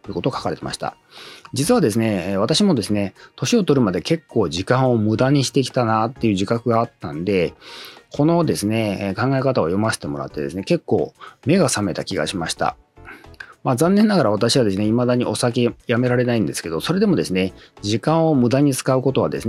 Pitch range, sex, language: 110-160 Hz, male, Japanese